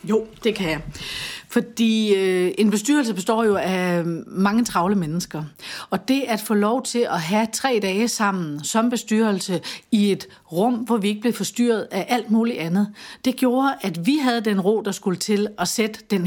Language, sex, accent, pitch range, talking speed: Danish, female, native, 175-225 Hz, 190 wpm